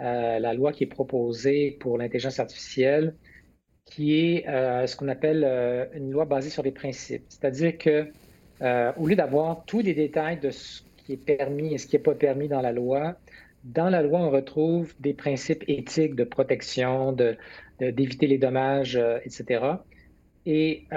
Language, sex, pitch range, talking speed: French, male, 135-160 Hz, 185 wpm